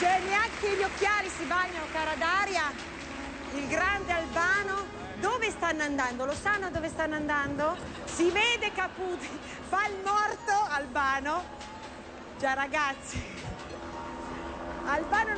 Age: 40-59